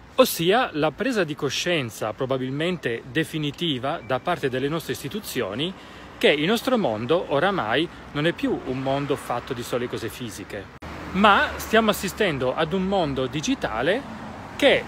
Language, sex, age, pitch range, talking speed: Italian, male, 30-49, 130-180 Hz, 140 wpm